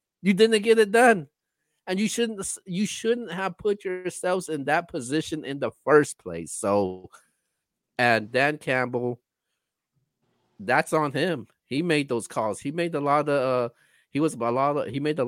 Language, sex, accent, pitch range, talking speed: English, male, American, 105-145 Hz, 175 wpm